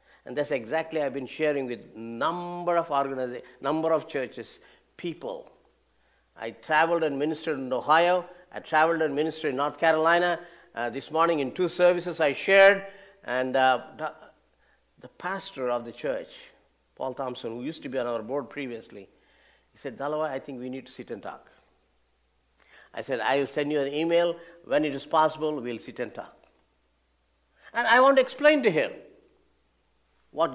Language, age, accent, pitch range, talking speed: English, 50-69, Indian, 115-170 Hz, 175 wpm